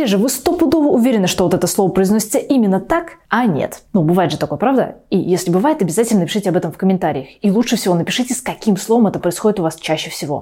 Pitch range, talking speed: 180-275 Hz, 230 wpm